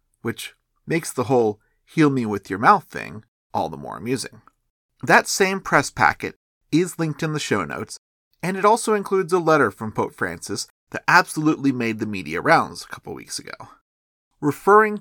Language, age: English, 40-59